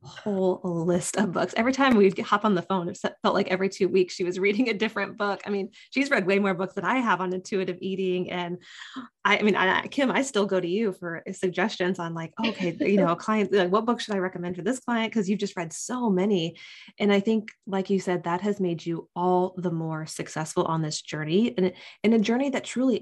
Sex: female